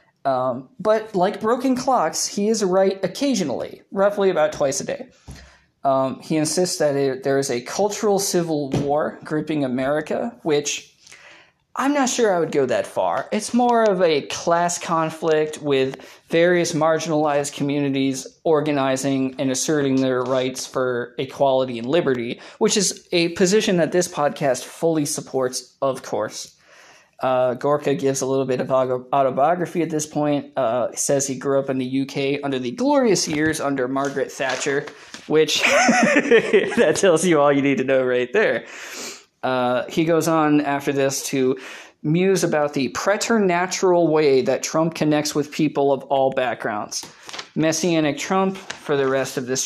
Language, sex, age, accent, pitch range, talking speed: English, male, 20-39, American, 135-180 Hz, 155 wpm